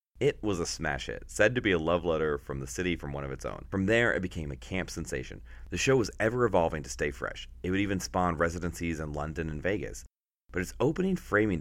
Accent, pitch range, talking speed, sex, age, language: American, 70-95 Hz, 240 wpm, male, 30-49, English